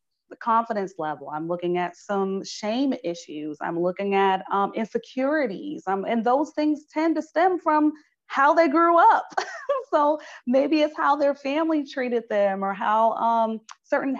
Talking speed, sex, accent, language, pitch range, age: 160 wpm, female, American, English, 190-255 Hz, 30-49